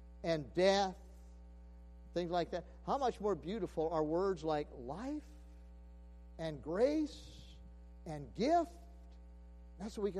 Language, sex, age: English, male, 50-69